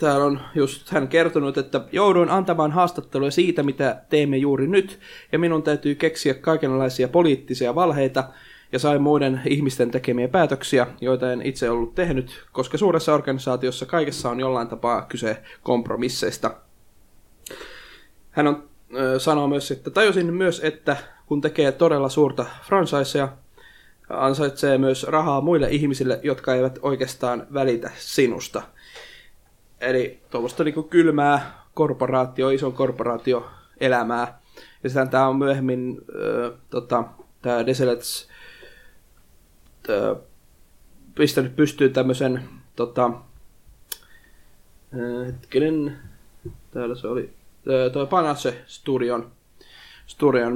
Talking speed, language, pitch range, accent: 105 wpm, Finnish, 125-145 Hz, native